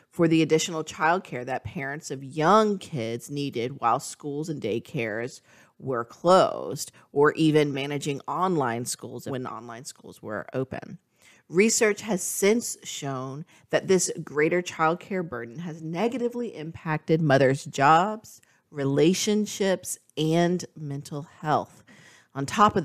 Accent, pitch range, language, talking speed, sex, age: American, 135-175 Hz, English, 125 wpm, female, 40-59